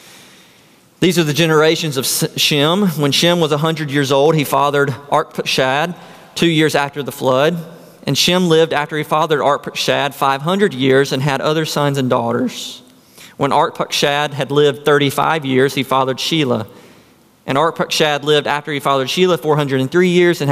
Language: English